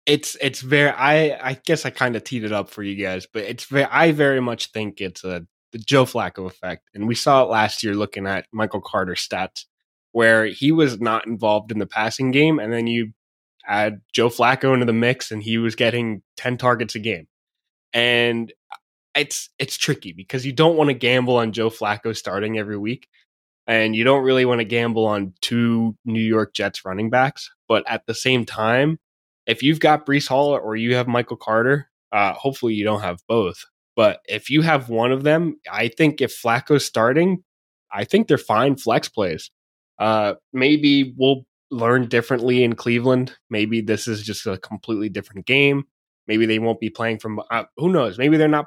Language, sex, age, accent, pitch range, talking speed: English, male, 10-29, American, 110-135 Hz, 200 wpm